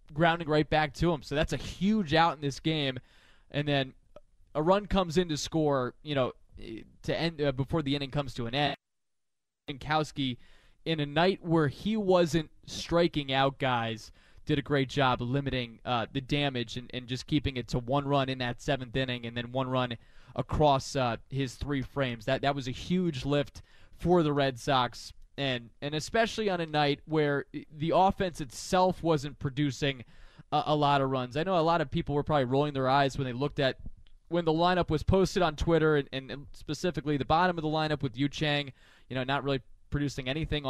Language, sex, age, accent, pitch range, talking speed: English, male, 20-39, American, 125-160 Hz, 205 wpm